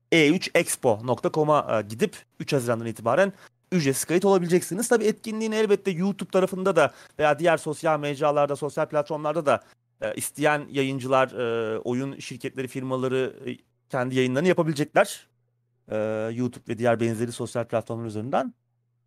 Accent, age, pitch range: native, 30-49, 125-175 Hz